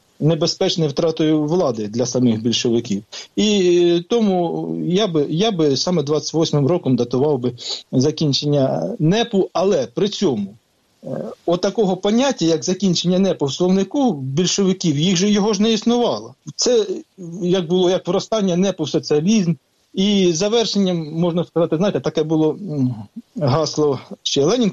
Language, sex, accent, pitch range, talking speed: Ukrainian, male, native, 140-190 Hz, 135 wpm